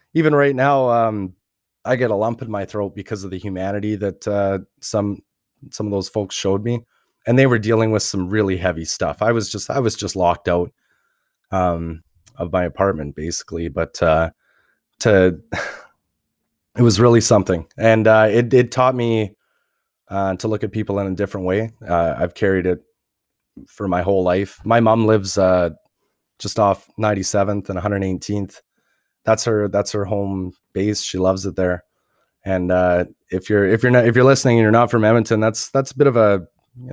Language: English